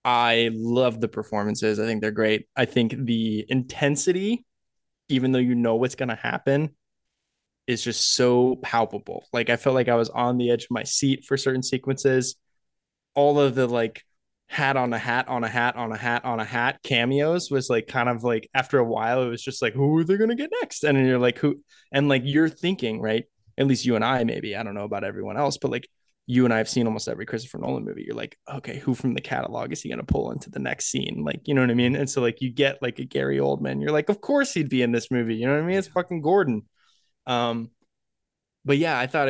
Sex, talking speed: male, 245 wpm